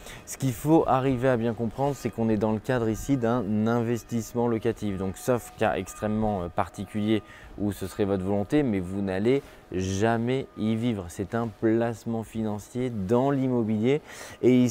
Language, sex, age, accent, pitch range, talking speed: French, male, 20-39, French, 105-125 Hz, 165 wpm